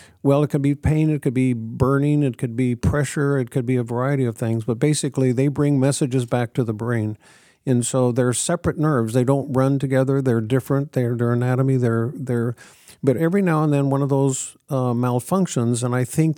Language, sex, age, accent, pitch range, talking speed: English, male, 50-69, American, 125-145 Hz, 215 wpm